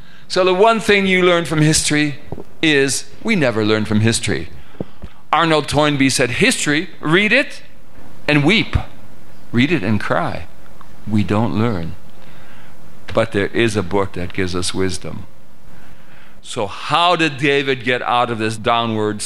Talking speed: 145 wpm